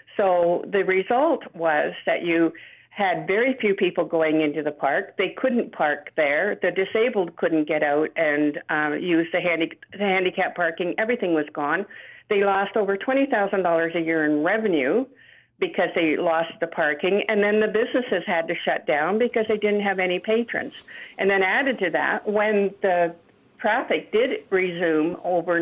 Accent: American